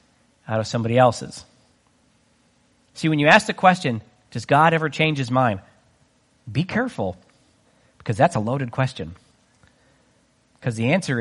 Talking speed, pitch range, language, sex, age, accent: 140 wpm, 125-210 Hz, English, male, 40-59, American